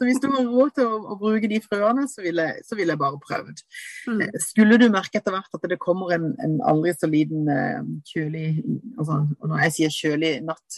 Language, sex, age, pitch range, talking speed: English, female, 30-49, 150-205 Hz, 180 wpm